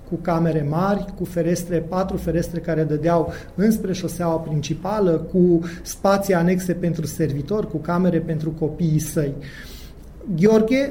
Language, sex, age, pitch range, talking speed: Romanian, male, 30-49, 160-195 Hz, 125 wpm